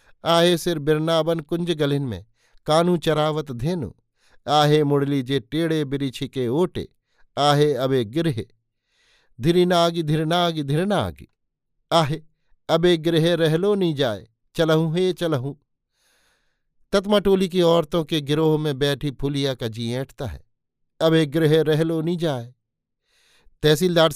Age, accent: 50-69, native